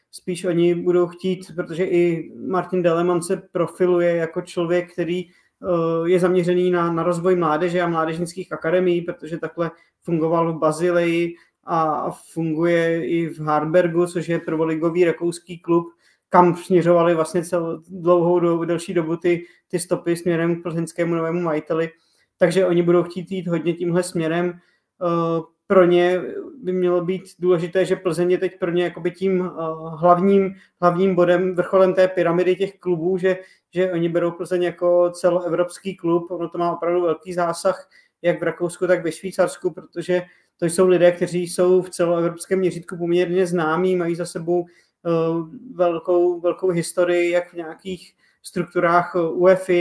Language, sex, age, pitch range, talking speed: Czech, male, 20-39, 170-180 Hz, 145 wpm